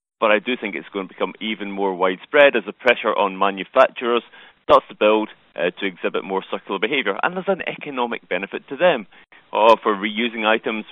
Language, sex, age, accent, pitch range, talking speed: English, male, 30-49, British, 105-135 Hz, 200 wpm